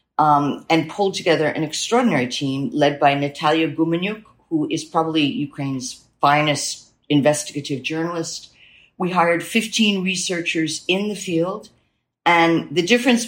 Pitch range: 150-185 Hz